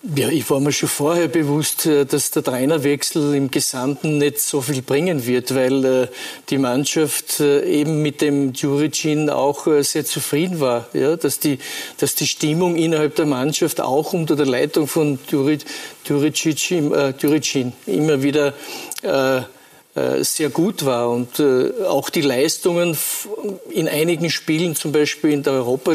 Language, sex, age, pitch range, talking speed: German, male, 50-69, 140-160 Hz, 155 wpm